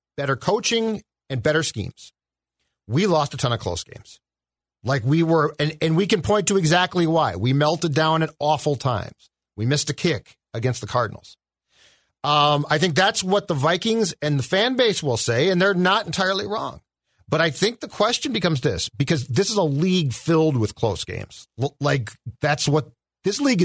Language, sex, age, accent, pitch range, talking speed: English, male, 40-59, American, 130-175 Hz, 190 wpm